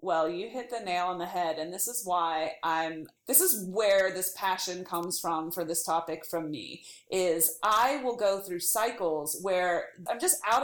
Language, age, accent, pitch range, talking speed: English, 30-49, American, 175-245 Hz, 195 wpm